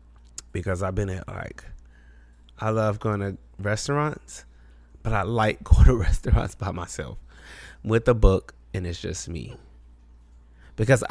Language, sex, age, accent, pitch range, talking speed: English, male, 20-39, American, 80-115 Hz, 140 wpm